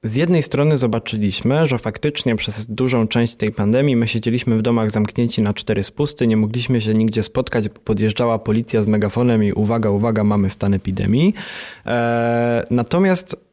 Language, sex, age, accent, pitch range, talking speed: Polish, male, 20-39, native, 110-130 Hz, 155 wpm